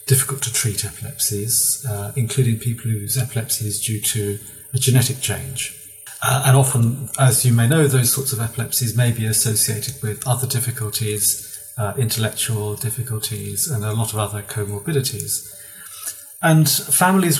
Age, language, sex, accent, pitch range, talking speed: 40-59, English, male, British, 110-135 Hz, 150 wpm